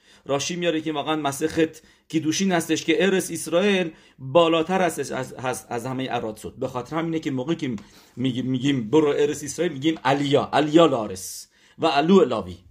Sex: male